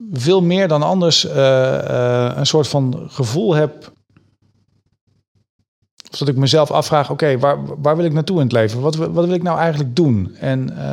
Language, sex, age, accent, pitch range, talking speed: Dutch, male, 40-59, Dutch, 125-155 Hz, 185 wpm